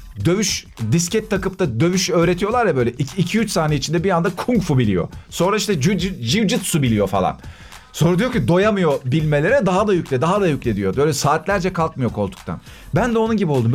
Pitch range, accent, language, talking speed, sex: 125-180 Hz, native, Turkish, 185 wpm, male